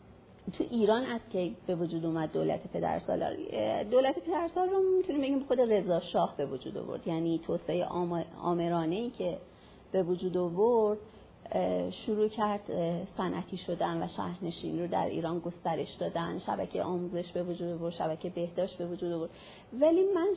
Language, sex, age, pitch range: Persian, female, 40-59, 170-215 Hz